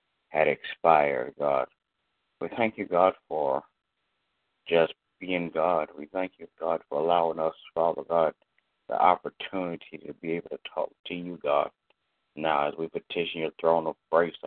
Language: English